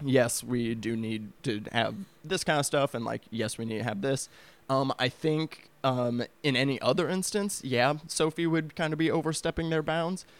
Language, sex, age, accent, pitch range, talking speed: English, male, 20-39, American, 115-140 Hz, 200 wpm